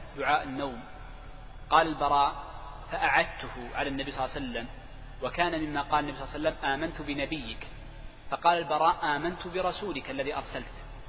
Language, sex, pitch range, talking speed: Arabic, male, 125-155 Hz, 145 wpm